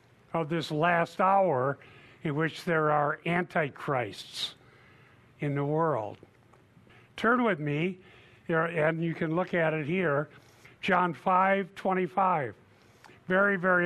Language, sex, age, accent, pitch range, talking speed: English, male, 60-79, American, 125-180 Hz, 115 wpm